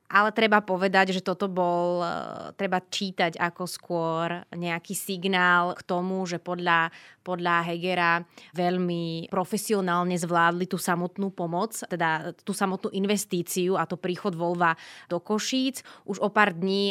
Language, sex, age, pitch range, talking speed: Slovak, female, 20-39, 175-200 Hz, 135 wpm